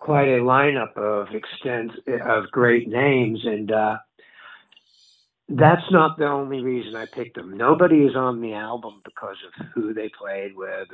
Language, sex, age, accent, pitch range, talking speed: English, male, 60-79, American, 100-155 Hz, 160 wpm